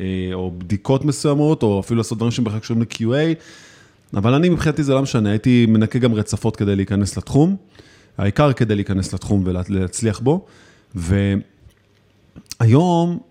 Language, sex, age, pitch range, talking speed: Hebrew, male, 30-49, 105-155 Hz, 135 wpm